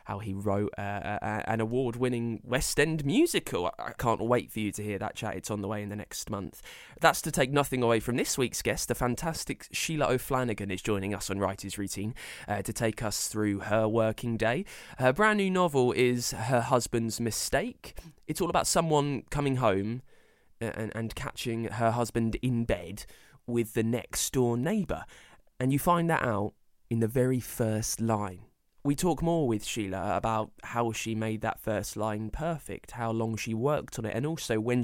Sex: male